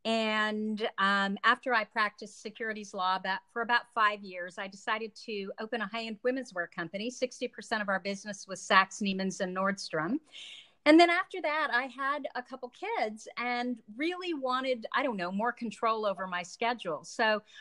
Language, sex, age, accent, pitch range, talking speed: English, female, 50-69, American, 195-245 Hz, 175 wpm